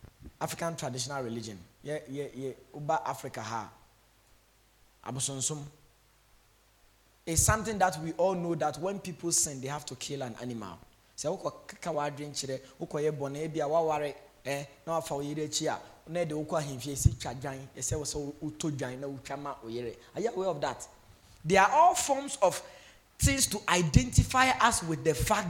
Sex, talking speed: male, 100 wpm